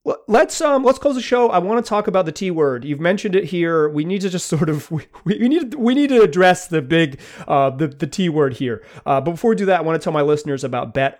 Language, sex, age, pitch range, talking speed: English, male, 30-49, 140-190 Hz, 275 wpm